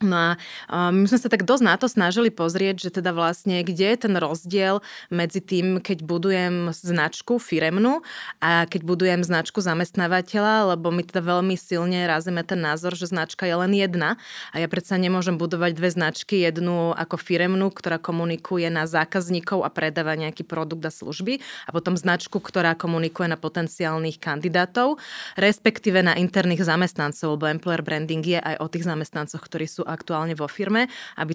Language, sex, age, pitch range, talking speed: Slovak, female, 20-39, 165-190 Hz, 170 wpm